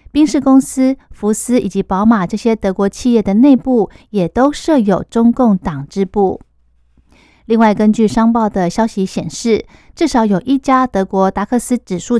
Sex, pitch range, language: female, 195-250 Hz, Chinese